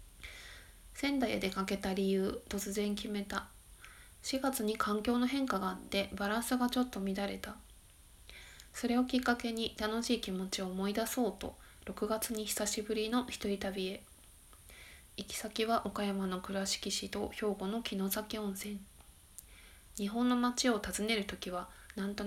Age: 20-39